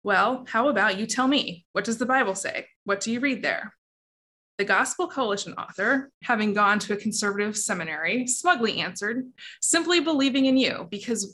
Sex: female